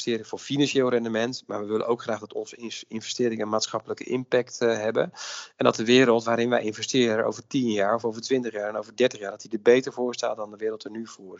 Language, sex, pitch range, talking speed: Dutch, male, 110-130 Hz, 240 wpm